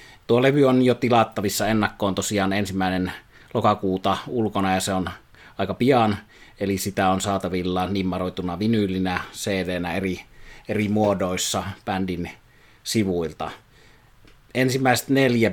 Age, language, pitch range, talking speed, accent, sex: 30-49, Finnish, 95-110 Hz, 115 wpm, native, male